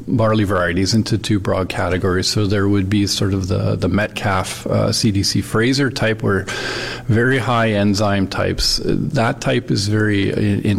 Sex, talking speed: male, 160 wpm